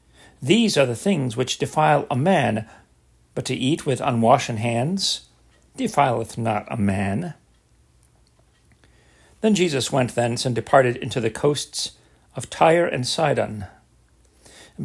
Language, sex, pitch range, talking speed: English, male, 115-175 Hz, 130 wpm